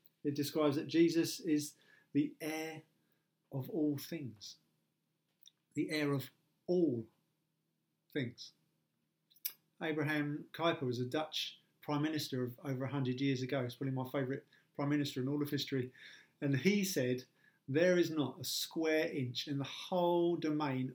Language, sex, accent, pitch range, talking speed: English, male, British, 135-165 Hz, 145 wpm